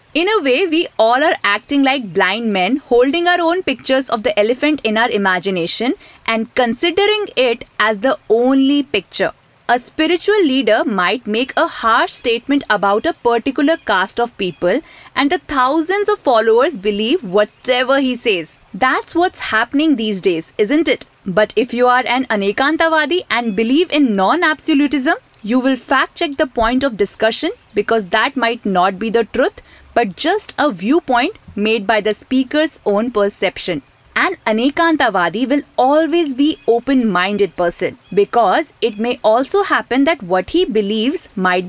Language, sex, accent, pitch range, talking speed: Hindi, female, native, 215-320 Hz, 160 wpm